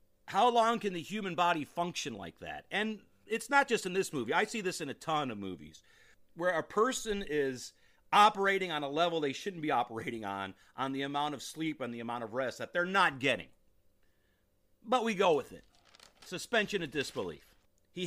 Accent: American